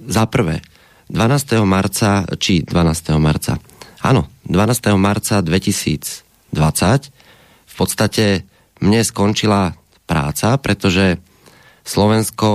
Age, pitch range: 30-49, 85-105 Hz